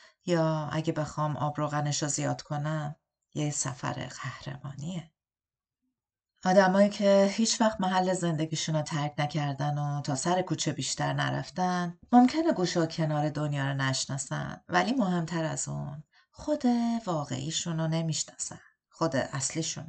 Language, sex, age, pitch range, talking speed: Persian, female, 40-59, 150-180 Hz, 120 wpm